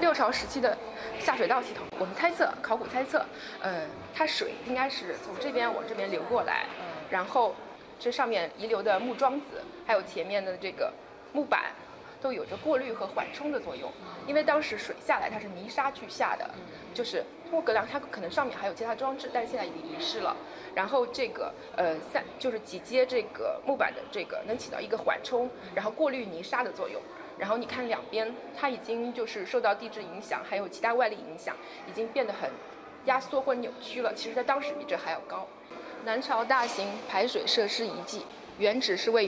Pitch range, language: 220-300 Hz, Chinese